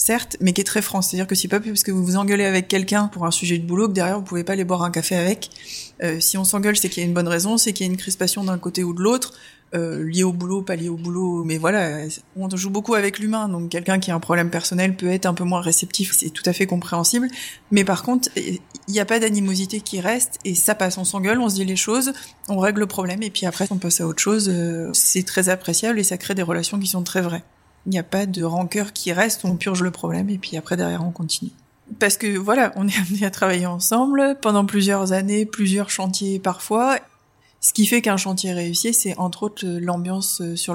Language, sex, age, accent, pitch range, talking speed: French, female, 20-39, French, 175-205 Hz, 260 wpm